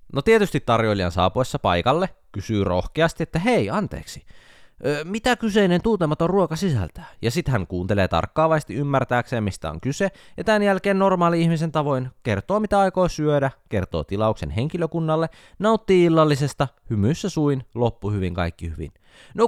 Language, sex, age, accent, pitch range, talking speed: Finnish, male, 20-39, native, 100-165 Hz, 140 wpm